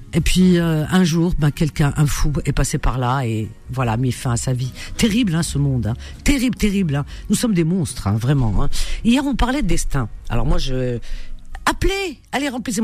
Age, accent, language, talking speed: 50-69, French, French, 220 wpm